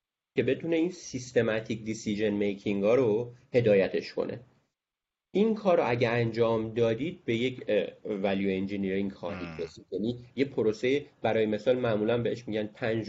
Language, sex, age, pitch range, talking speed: Persian, male, 30-49, 100-135 Hz, 140 wpm